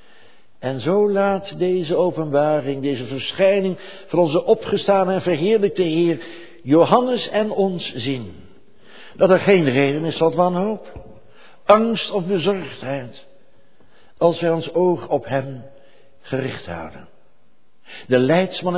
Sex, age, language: male, 60-79, Dutch